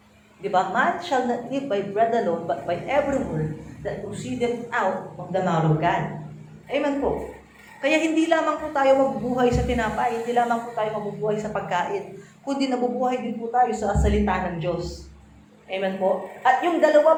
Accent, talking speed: native, 180 wpm